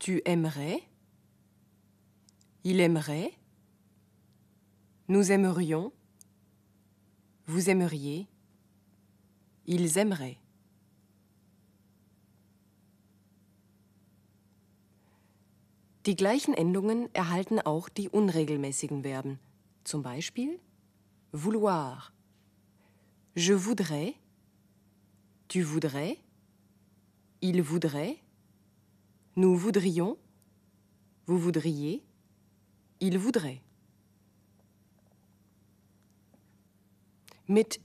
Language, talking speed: German, 55 wpm